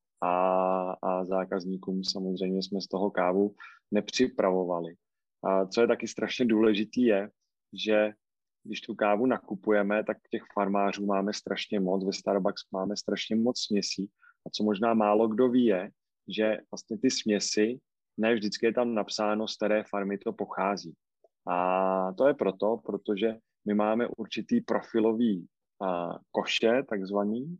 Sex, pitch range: male, 100-110 Hz